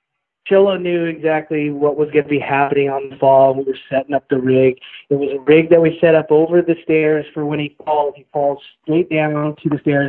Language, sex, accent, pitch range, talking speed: English, male, American, 140-165 Hz, 240 wpm